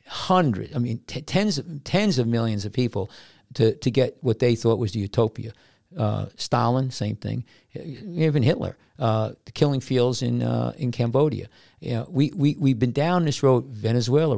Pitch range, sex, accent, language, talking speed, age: 110-130 Hz, male, American, English, 185 wpm, 50-69